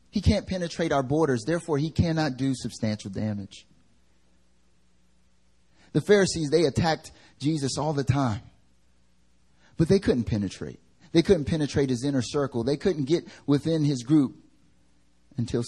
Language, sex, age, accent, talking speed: English, male, 30-49, American, 140 wpm